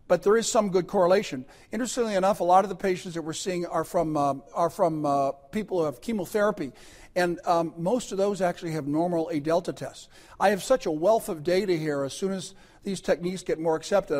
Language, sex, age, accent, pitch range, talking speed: English, male, 50-69, American, 155-195 Hz, 220 wpm